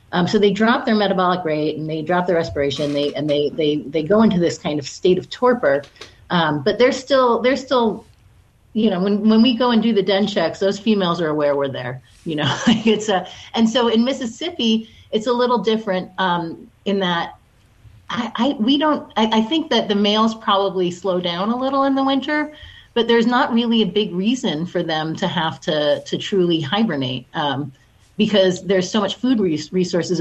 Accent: American